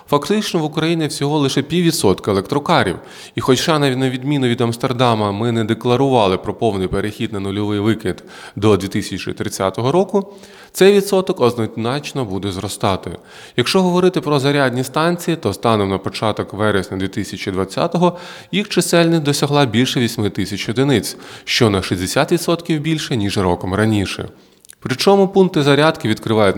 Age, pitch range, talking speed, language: 20-39, 100-150 Hz, 140 wpm, Ukrainian